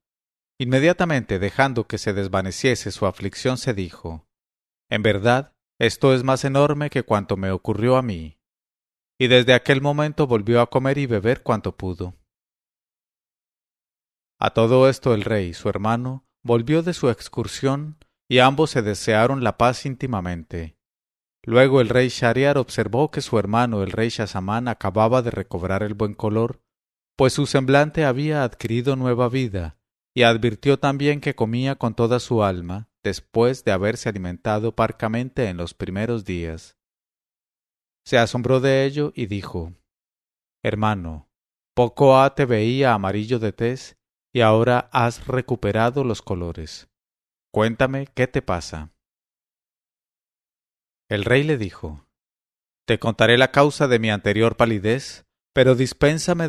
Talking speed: 140 wpm